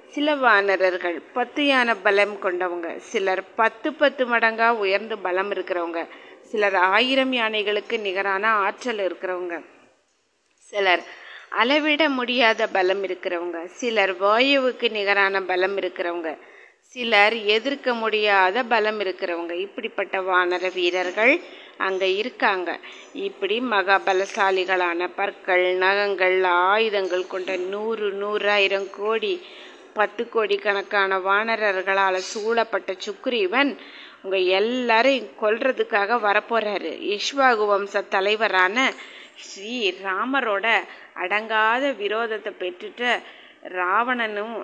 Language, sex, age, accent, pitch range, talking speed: Tamil, female, 30-49, native, 190-235 Hz, 80 wpm